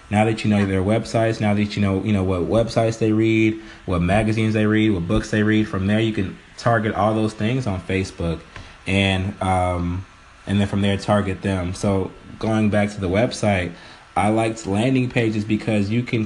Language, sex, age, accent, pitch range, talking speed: English, male, 20-39, American, 95-110 Hz, 205 wpm